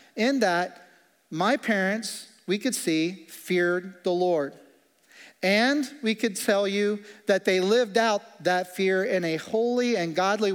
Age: 40-59